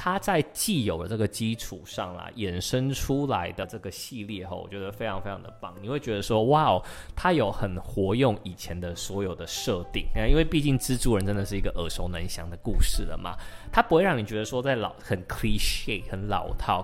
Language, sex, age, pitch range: Chinese, male, 20-39, 95-130 Hz